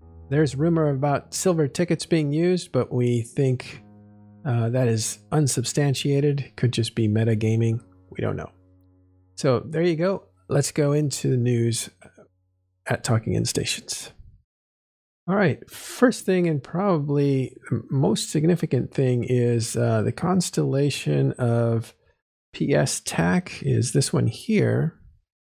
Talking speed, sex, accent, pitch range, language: 125 wpm, male, American, 110-140 Hz, English